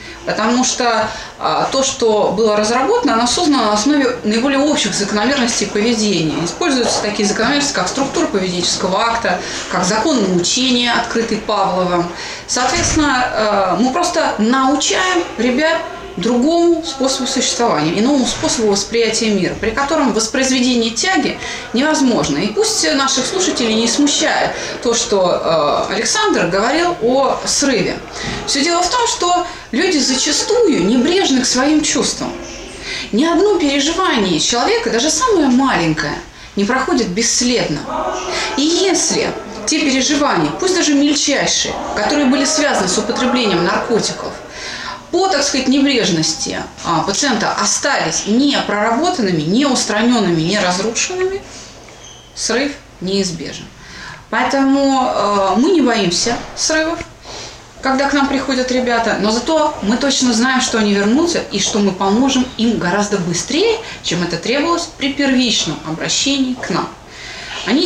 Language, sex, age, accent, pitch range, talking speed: Russian, female, 30-49, native, 215-295 Hz, 125 wpm